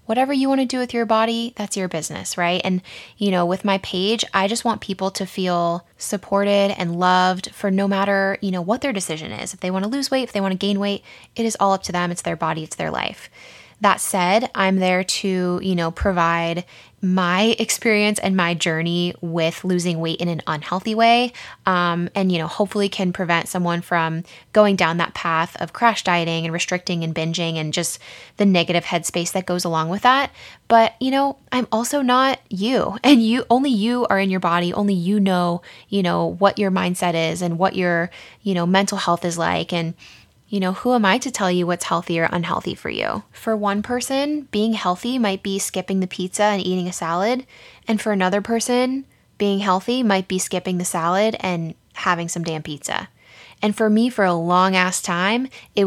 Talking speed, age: 210 wpm, 10-29